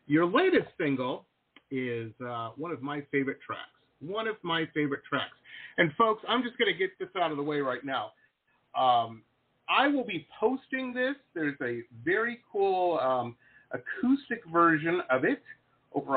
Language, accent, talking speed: English, American, 165 wpm